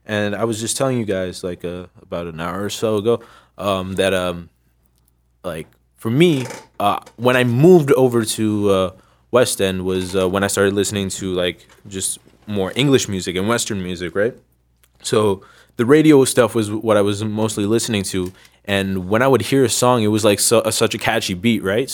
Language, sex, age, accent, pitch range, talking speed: English, male, 20-39, American, 100-120 Hz, 200 wpm